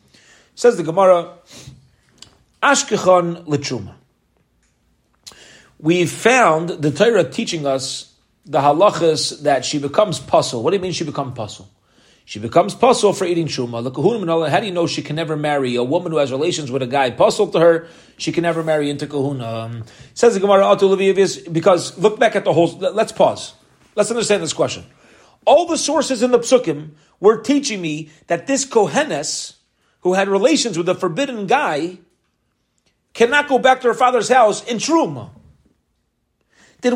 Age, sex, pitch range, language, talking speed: 40-59, male, 160-245 Hz, English, 155 wpm